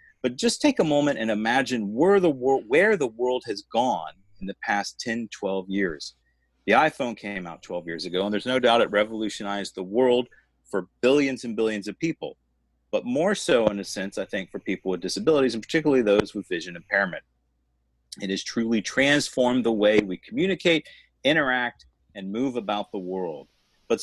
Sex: male